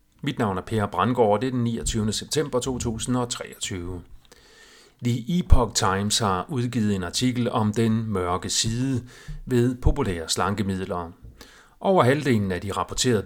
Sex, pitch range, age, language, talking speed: male, 100-125 Hz, 40-59, Danish, 135 wpm